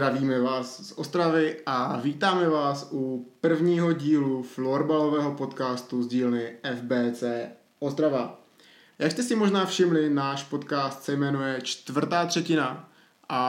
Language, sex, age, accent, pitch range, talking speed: Czech, male, 20-39, native, 130-155 Hz, 125 wpm